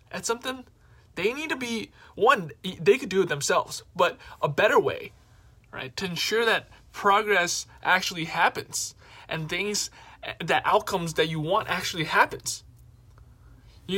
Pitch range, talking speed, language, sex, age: 155-210 Hz, 140 wpm, English, male, 20-39